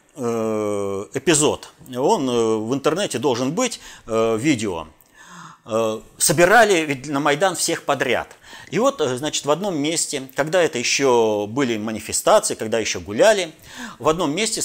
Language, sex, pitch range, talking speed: Russian, male, 110-155 Hz, 120 wpm